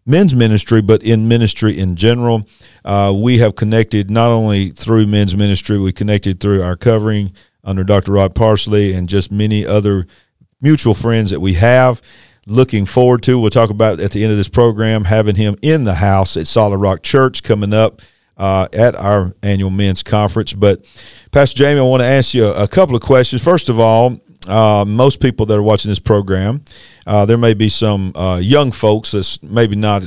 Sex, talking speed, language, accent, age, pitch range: male, 195 wpm, English, American, 50-69, 100-120 Hz